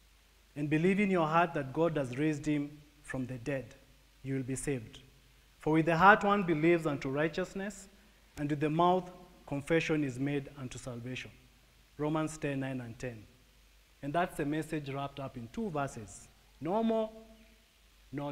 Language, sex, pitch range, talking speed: English, male, 130-170 Hz, 165 wpm